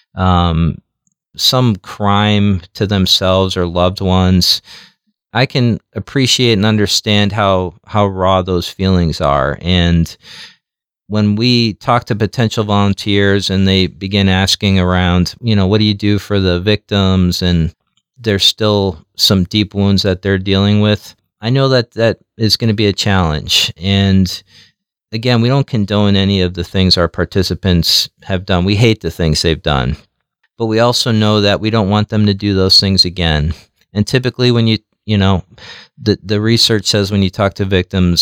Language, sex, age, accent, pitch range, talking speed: English, male, 40-59, American, 90-105 Hz, 170 wpm